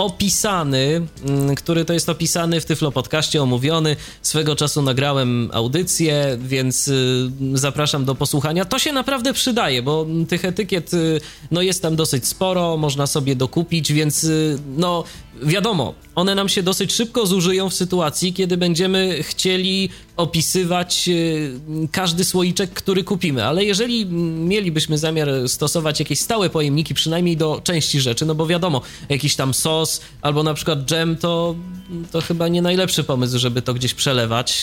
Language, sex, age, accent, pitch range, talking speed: Polish, male, 20-39, native, 140-175 Hz, 140 wpm